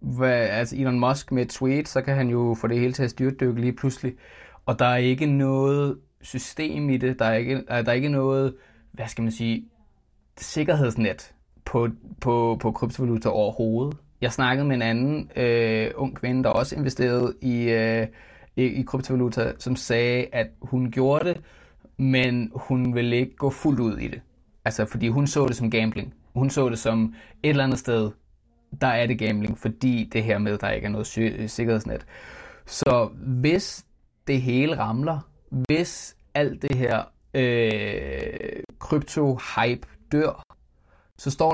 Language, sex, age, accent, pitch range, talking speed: Danish, male, 20-39, native, 115-135 Hz, 170 wpm